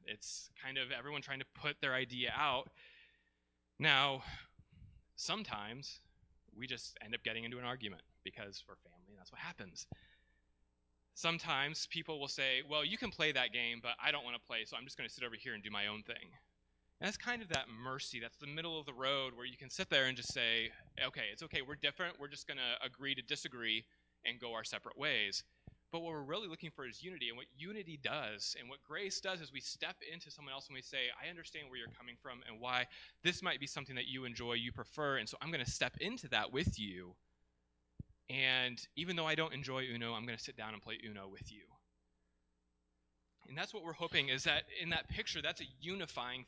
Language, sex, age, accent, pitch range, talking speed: English, male, 20-39, American, 115-150 Hz, 225 wpm